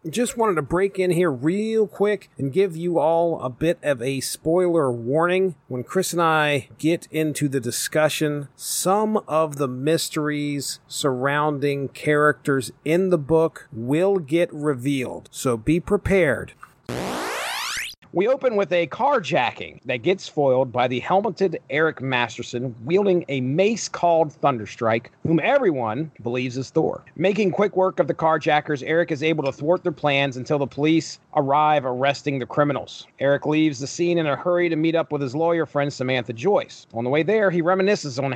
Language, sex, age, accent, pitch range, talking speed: English, male, 40-59, American, 135-170 Hz, 165 wpm